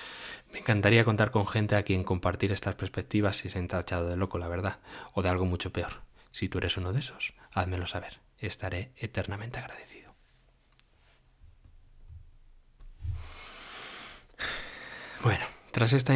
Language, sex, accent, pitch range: Spanish, male, Spanish, 95-120 Hz